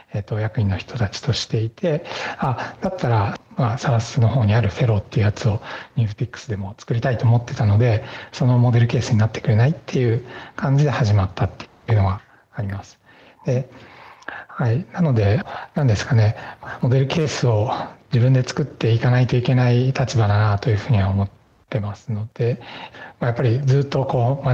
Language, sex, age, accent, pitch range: Japanese, male, 60-79, native, 110-135 Hz